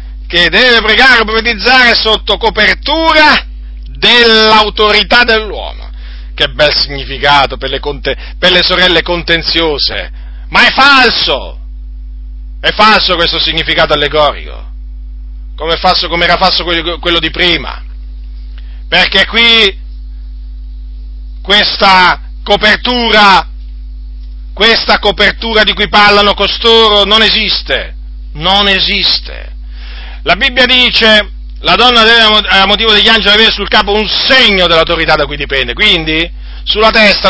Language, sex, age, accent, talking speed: Italian, male, 40-59, native, 115 wpm